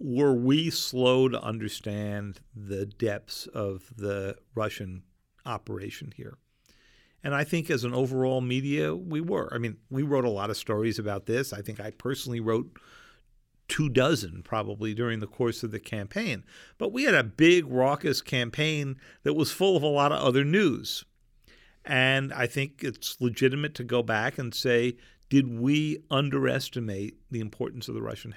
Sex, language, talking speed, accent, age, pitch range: male, English, 165 wpm, American, 50-69, 110-140 Hz